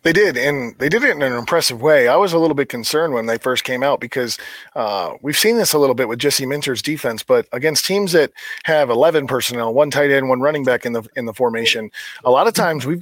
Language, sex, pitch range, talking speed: English, male, 120-165 Hz, 260 wpm